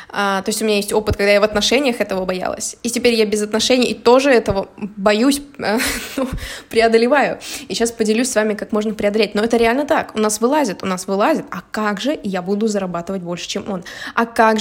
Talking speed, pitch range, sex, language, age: 220 wpm, 210-255 Hz, female, Russian, 20-39